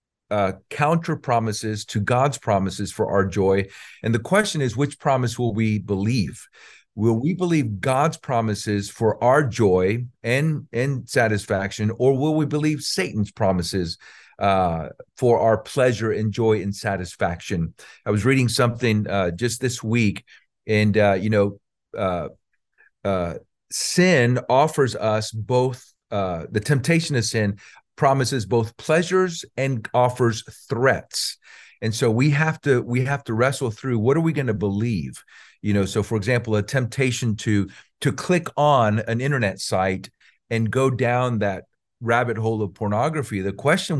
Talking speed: 150 wpm